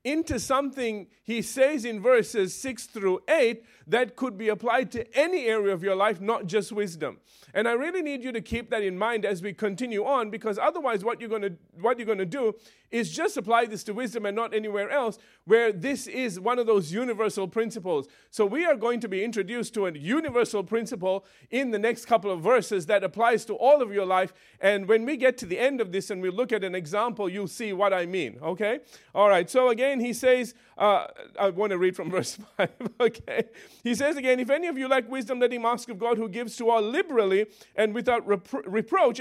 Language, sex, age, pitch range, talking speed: English, male, 40-59, 205-250 Hz, 225 wpm